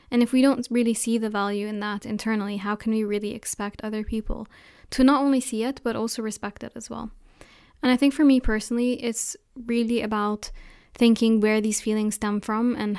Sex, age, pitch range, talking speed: female, 10-29, 200-225 Hz, 210 wpm